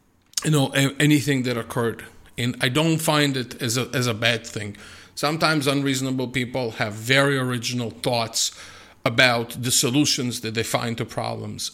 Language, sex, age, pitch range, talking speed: English, male, 50-69, 115-145 Hz, 160 wpm